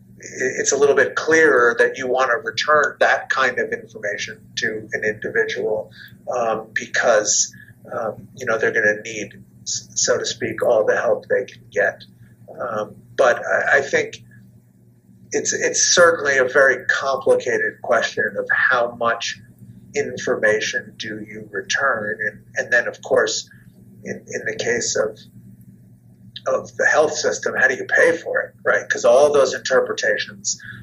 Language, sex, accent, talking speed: English, male, American, 155 wpm